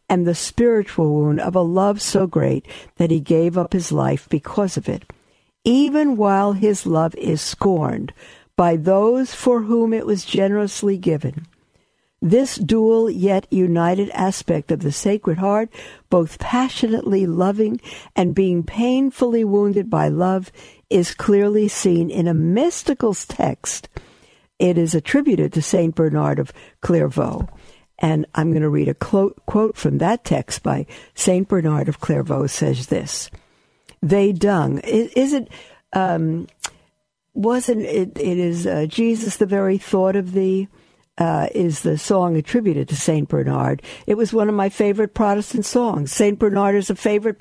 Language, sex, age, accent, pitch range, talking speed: English, female, 60-79, American, 170-210 Hz, 150 wpm